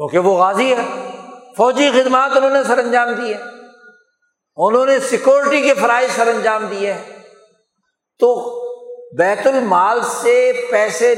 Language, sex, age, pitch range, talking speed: Urdu, male, 60-79, 225-285 Hz, 135 wpm